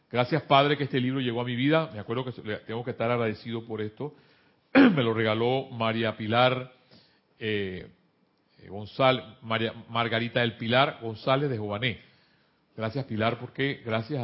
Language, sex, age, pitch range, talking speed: Spanish, male, 40-59, 115-145 Hz, 150 wpm